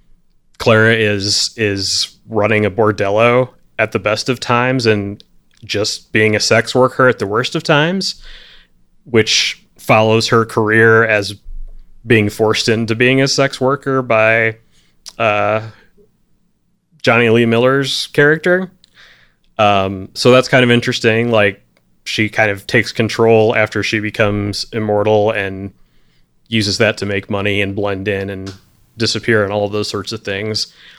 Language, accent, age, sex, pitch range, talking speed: English, American, 30-49, male, 100-115 Hz, 145 wpm